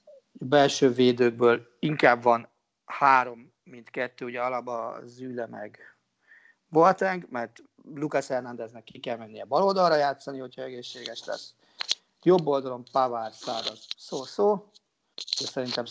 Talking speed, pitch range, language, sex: 125 wpm, 120-160 Hz, Hungarian, male